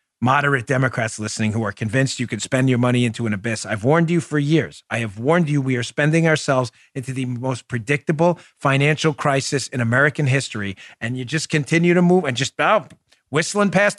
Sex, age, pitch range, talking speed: male, 40-59, 120-170 Hz, 195 wpm